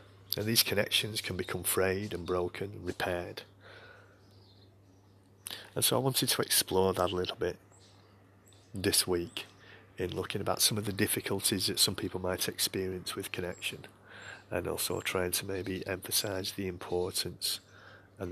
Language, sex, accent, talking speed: English, male, British, 145 wpm